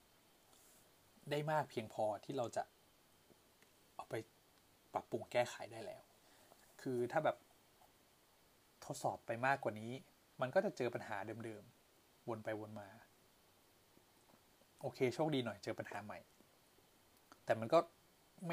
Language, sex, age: Thai, male, 20-39